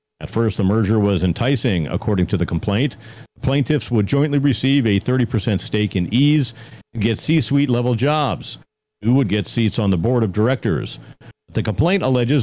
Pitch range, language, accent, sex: 105-140 Hz, English, American, male